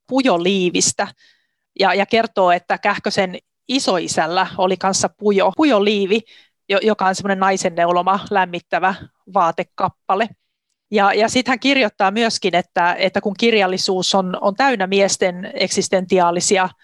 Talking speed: 115 wpm